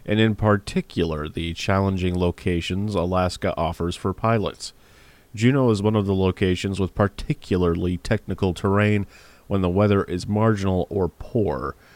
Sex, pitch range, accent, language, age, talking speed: male, 90-105 Hz, American, English, 30-49, 135 wpm